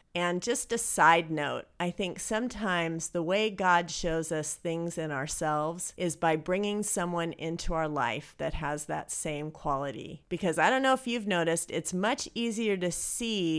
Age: 40-59